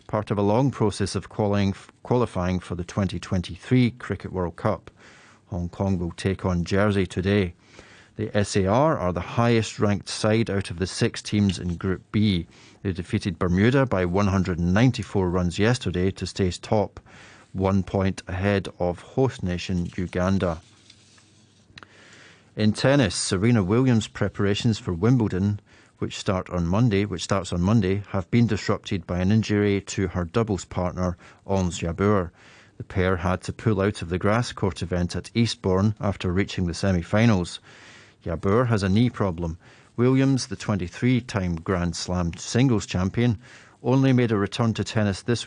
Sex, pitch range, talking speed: male, 95-110 Hz, 150 wpm